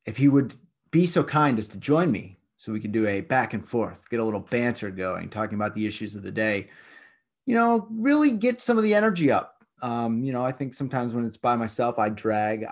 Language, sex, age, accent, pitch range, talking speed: English, male, 30-49, American, 105-135 Hz, 240 wpm